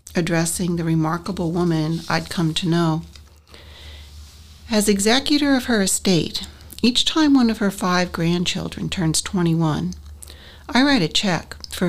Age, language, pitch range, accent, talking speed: 60-79, English, 145-195 Hz, American, 135 wpm